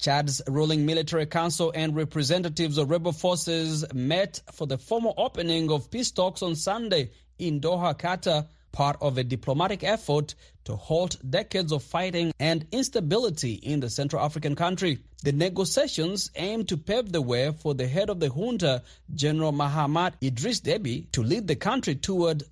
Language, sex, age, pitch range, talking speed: English, male, 30-49, 140-180 Hz, 165 wpm